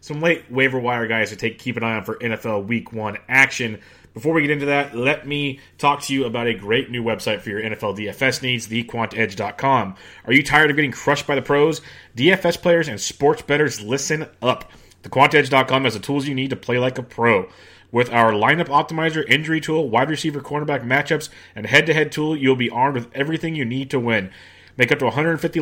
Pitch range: 115-150 Hz